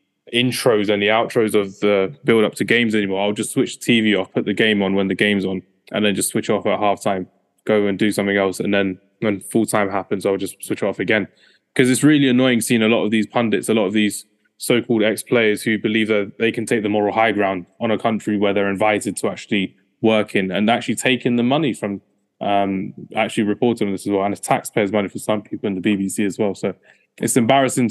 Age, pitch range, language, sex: 20-39, 100-120 Hz, English, male